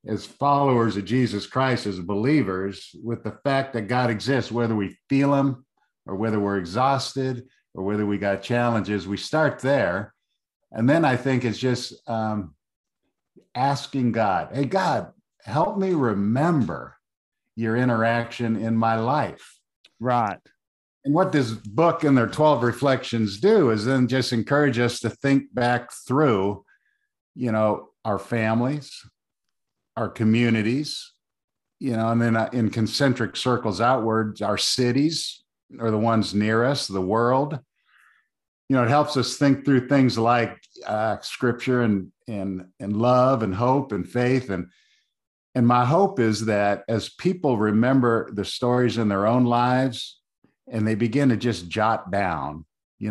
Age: 50-69